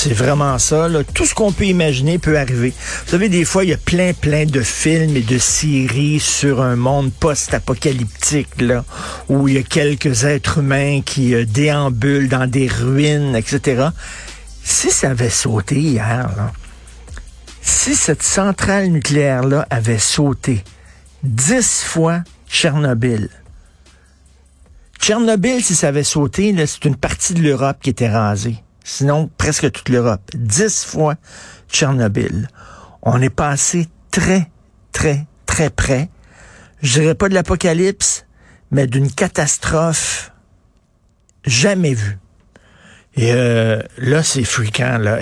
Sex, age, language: male, 60-79, French